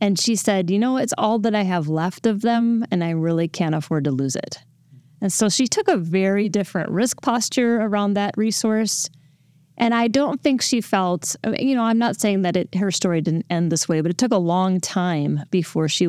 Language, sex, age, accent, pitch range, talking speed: English, female, 30-49, American, 155-220 Hz, 220 wpm